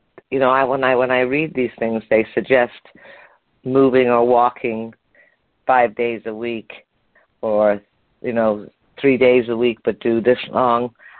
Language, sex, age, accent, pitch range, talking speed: English, female, 50-69, American, 110-125 Hz, 160 wpm